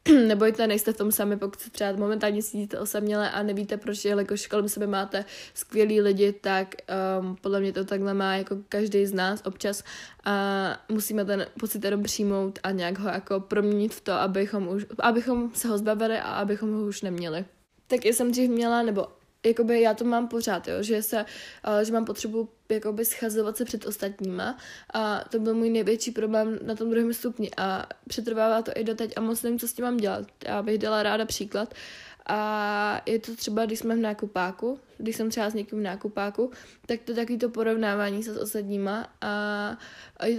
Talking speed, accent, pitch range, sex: 195 wpm, native, 205-225 Hz, female